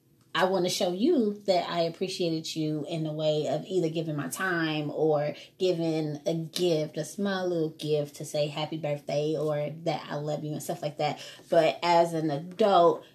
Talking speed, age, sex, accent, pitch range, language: 190 wpm, 20-39, female, American, 150-205 Hz, English